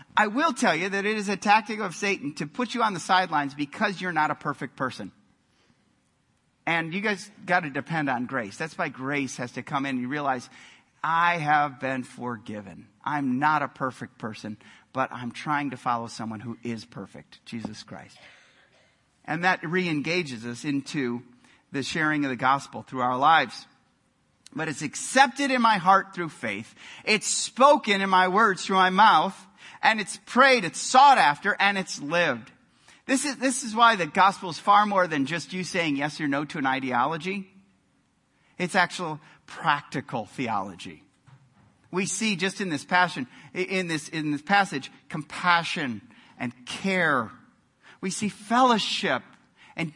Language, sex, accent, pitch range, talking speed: English, male, American, 140-210 Hz, 170 wpm